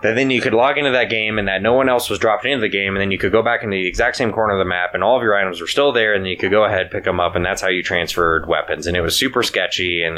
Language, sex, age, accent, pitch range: English, male, 20-39, American, 90-115 Hz